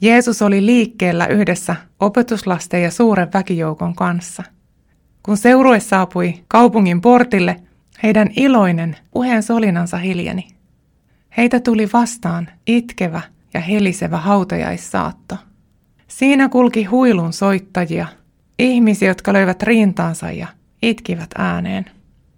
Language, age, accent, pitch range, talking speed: Finnish, 20-39, native, 180-230 Hz, 100 wpm